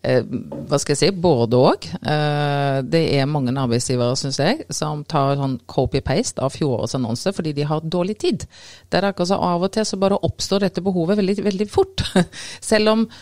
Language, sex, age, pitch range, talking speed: English, female, 30-49, 135-175 Hz, 200 wpm